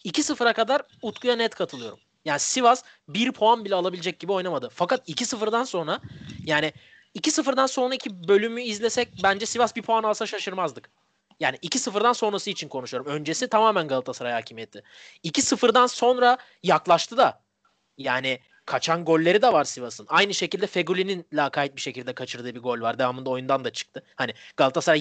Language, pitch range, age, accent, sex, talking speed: Turkish, 145-230 Hz, 30-49, native, male, 150 wpm